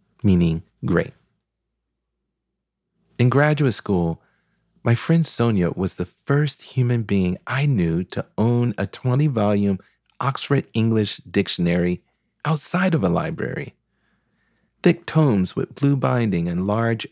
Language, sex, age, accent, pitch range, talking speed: English, male, 40-59, American, 95-130 Hz, 120 wpm